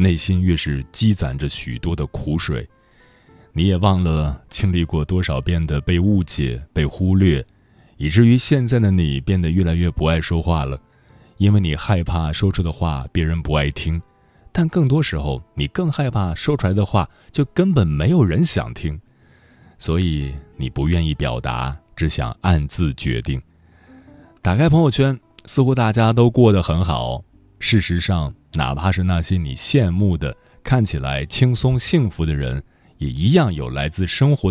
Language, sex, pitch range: Chinese, male, 75-110 Hz